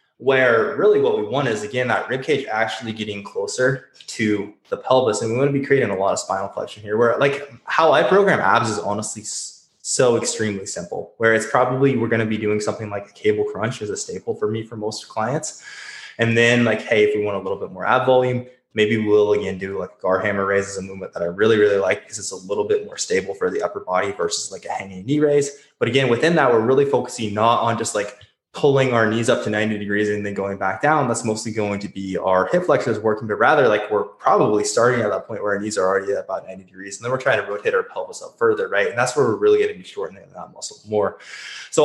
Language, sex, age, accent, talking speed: English, male, 20-39, American, 260 wpm